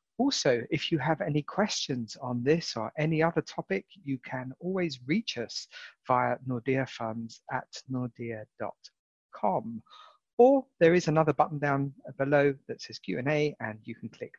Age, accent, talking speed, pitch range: 40-59, British, 145 wpm, 120-155 Hz